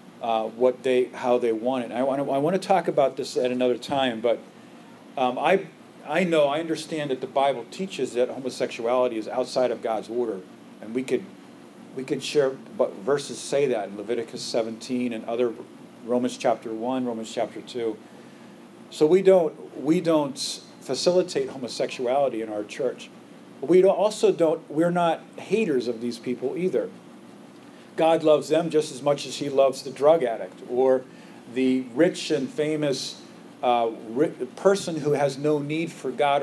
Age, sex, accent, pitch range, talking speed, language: 40-59, male, American, 125-160 Hz, 170 wpm, English